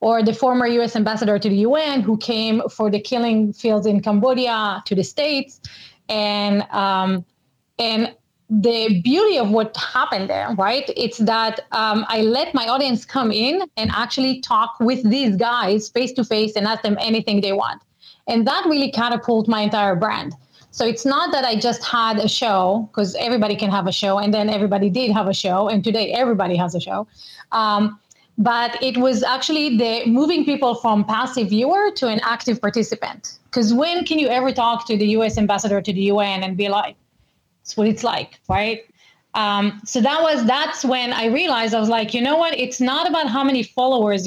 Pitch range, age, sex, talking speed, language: 210-245 Hz, 30-49, female, 195 wpm, English